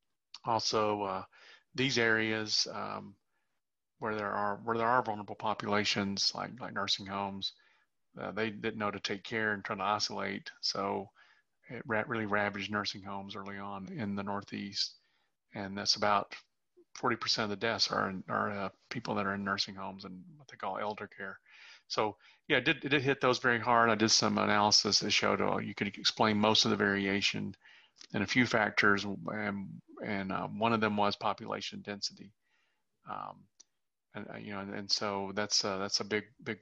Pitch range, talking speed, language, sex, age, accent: 100-115 Hz, 185 wpm, English, male, 40-59, American